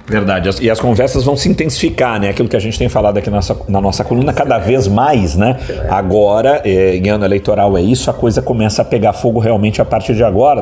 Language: Portuguese